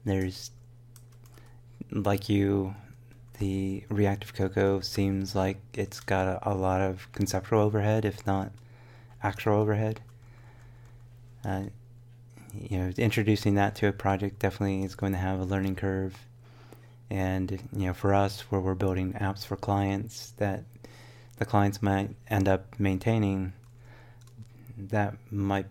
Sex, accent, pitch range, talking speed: male, American, 95-120 Hz, 130 wpm